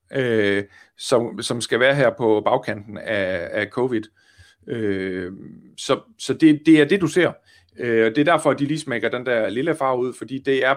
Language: Danish